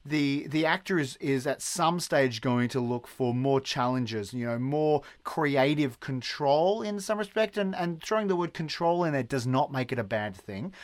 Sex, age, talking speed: male, 30-49, 205 wpm